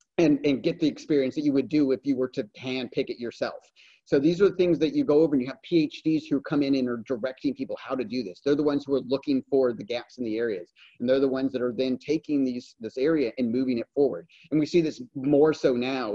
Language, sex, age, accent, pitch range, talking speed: English, male, 30-49, American, 120-145 Hz, 280 wpm